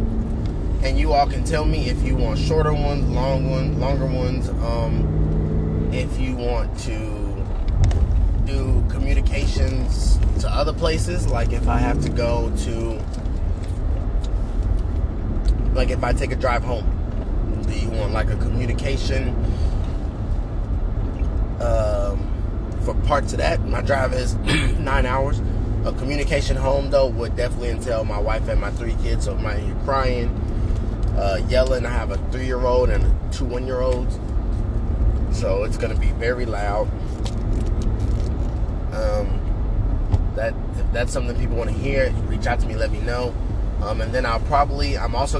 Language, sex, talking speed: English, male, 145 wpm